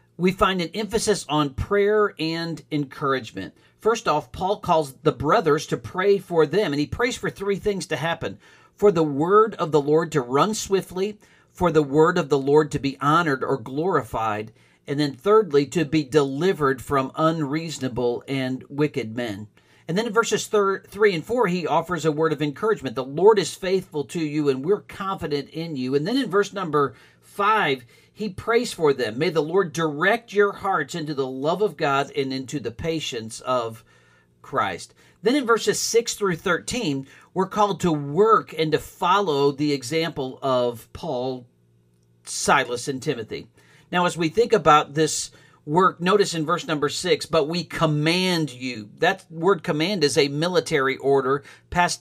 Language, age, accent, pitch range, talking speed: English, 50-69, American, 140-190 Hz, 175 wpm